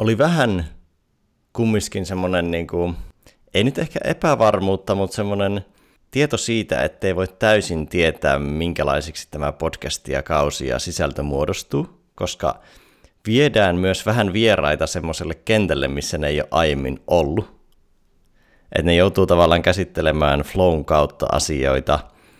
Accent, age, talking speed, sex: native, 30-49, 125 wpm, male